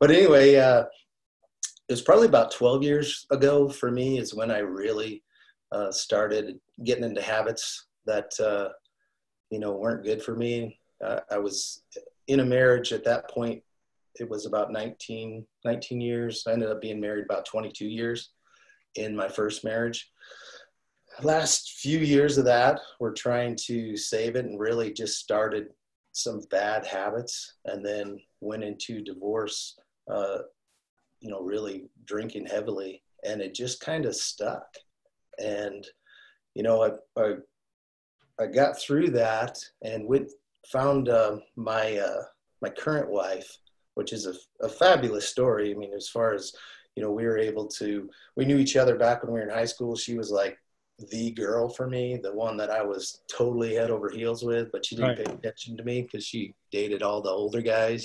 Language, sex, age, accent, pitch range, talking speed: English, male, 30-49, American, 105-125 Hz, 175 wpm